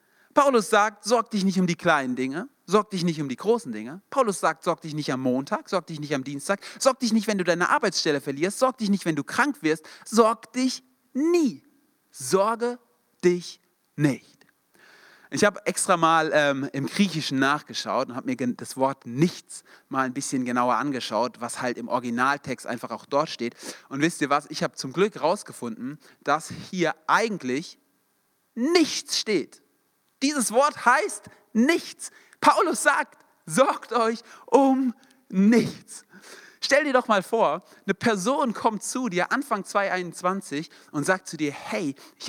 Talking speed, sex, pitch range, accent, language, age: 165 wpm, male, 150-235 Hz, German, German, 40-59